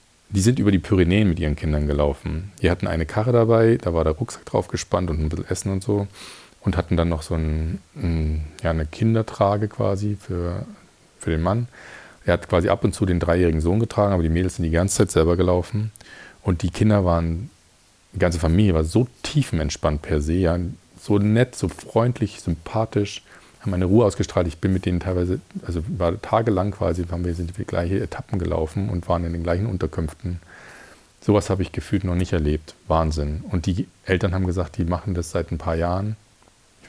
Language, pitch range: German, 80-100 Hz